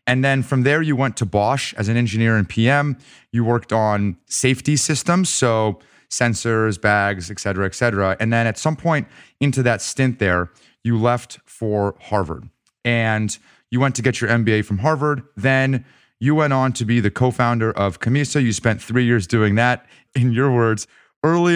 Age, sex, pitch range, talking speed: 30-49, male, 105-130 Hz, 185 wpm